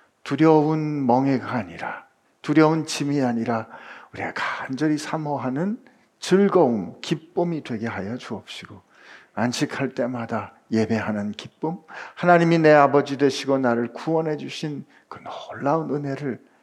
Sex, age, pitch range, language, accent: male, 50-69, 115-155 Hz, Korean, native